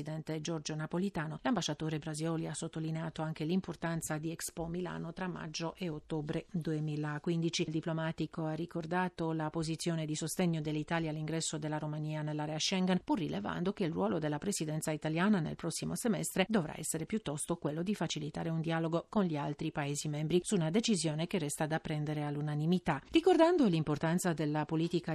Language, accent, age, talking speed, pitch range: Italian, native, 40-59, 155 wpm, 150-175 Hz